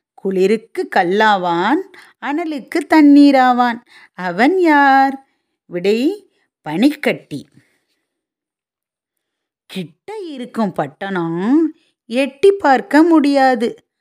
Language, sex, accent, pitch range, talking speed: English, female, Indian, 195-320 Hz, 55 wpm